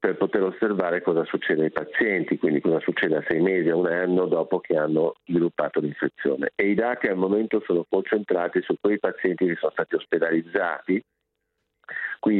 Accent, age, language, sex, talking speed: native, 50-69, Italian, male, 175 wpm